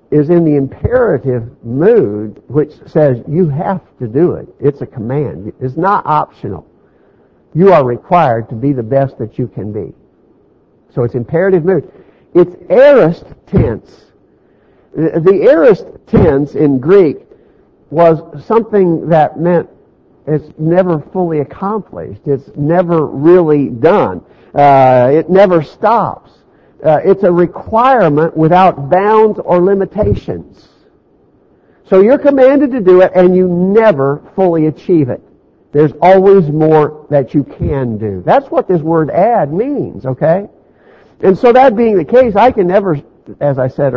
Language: English